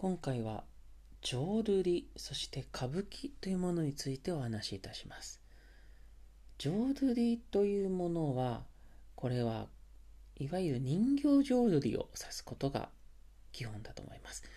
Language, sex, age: Japanese, male, 40-59